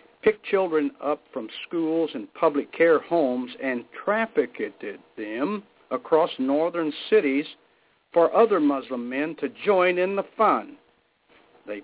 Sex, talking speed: male, 125 wpm